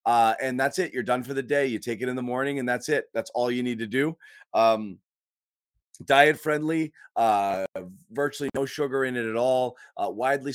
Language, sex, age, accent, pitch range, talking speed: English, male, 30-49, American, 110-140 Hz, 210 wpm